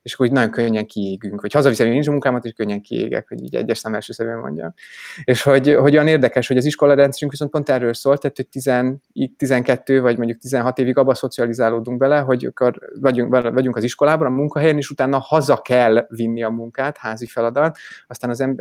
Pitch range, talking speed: 120-140 Hz, 205 wpm